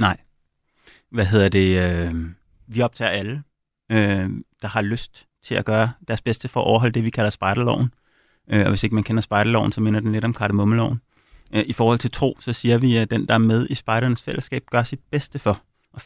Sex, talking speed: male, 200 wpm